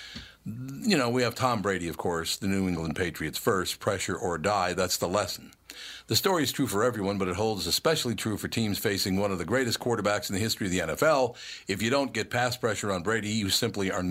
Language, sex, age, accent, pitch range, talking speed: English, male, 60-79, American, 95-125 Hz, 235 wpm